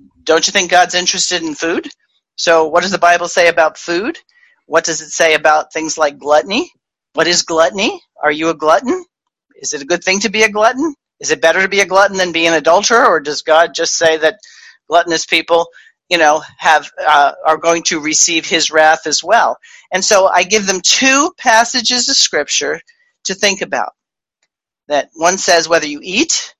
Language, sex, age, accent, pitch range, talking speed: English, male, 40-59, American, 165-245 Hz, 200 wpm